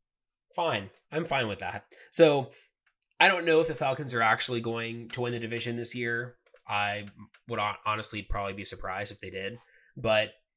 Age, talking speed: 20-39, 175 wpm